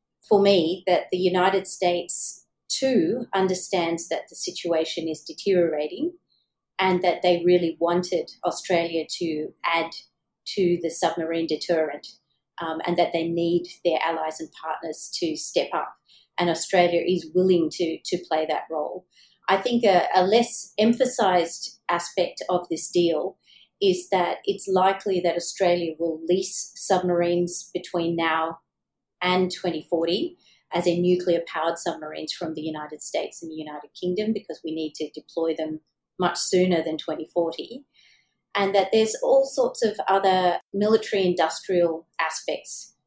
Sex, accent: female, Australian